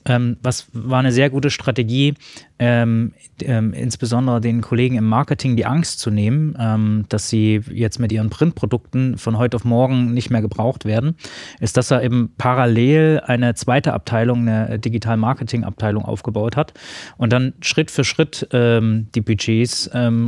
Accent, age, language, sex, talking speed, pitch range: German, 20-39, German, male, 155 wpm, 115-135 Hz